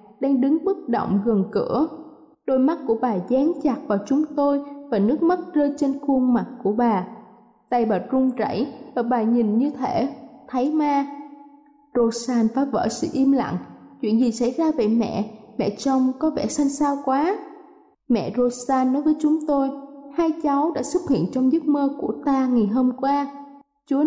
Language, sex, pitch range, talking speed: Vietnamese, female, 235-290 Hz, 185 wpm